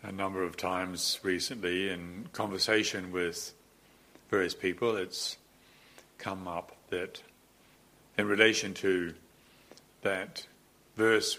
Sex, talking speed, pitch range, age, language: male, 100 wpm, 85-95 Hz, 50-69, English